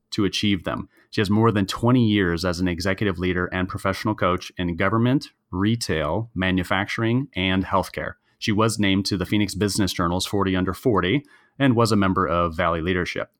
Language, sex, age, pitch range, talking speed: English, male, 30-49, 90-110 Hz, 180 wpm